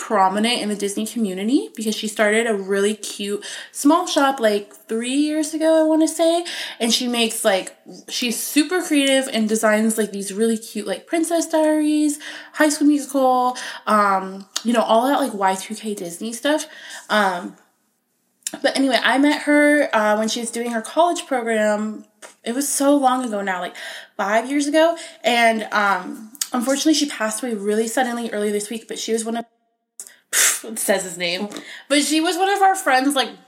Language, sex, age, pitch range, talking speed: English, female, 20-39, 205-275 Hz, 180 wpm